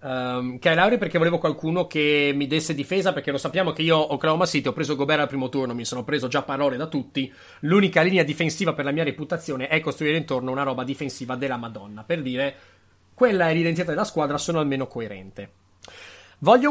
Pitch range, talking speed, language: 135-190 Hz, 200 wpm, Italian